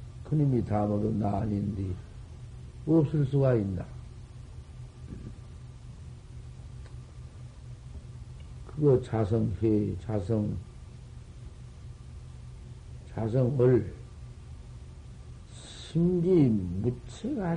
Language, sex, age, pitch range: Korean, male, 50-69, 110-140 Hz